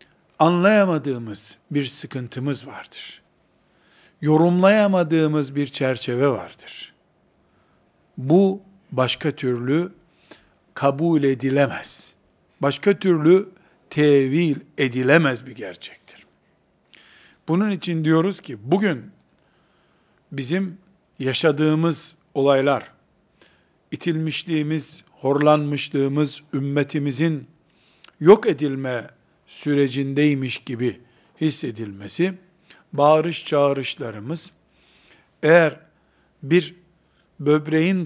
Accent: native